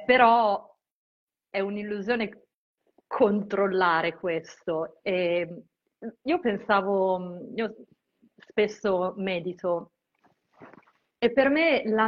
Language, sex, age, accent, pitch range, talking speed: Italian, female, 30-49, native, 185-235 Hz, 75 wpm